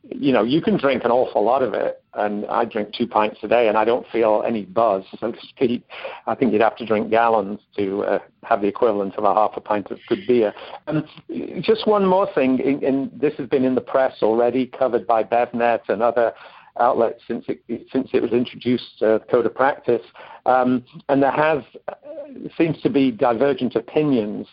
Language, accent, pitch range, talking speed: English, British, 110-135 Hz, 205 wpm